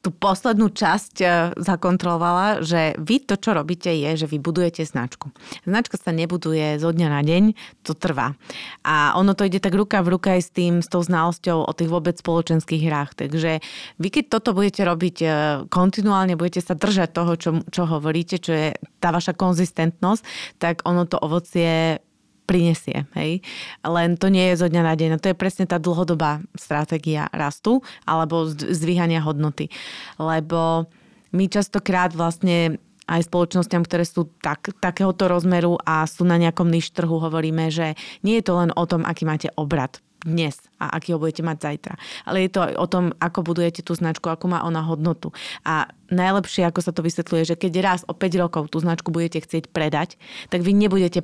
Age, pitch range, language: 30-49, 160-185 Hz, Slovak